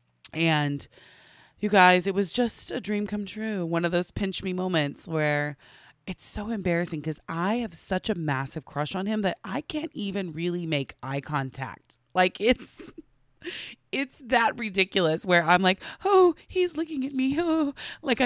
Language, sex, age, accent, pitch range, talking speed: English, female, 30-49, American, 140-200 Hz, 170 wpm